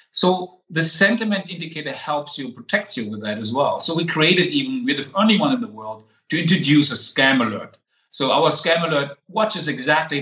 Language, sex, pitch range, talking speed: English, male, 130-165 Hz, 200 wpm